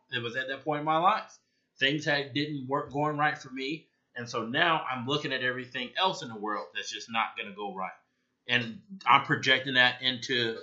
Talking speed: 220 wpm